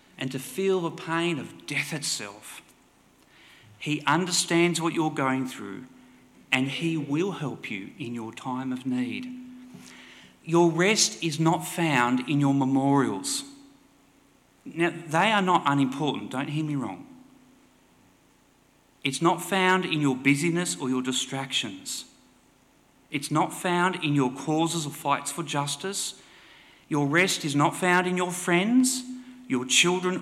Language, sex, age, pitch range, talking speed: English, male, 40-59, 145-190 Hz, 140 wpm